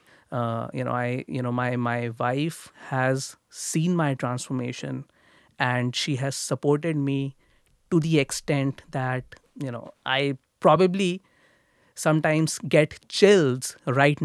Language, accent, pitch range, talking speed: English, Indian, 130-160 Hz, 125 wpm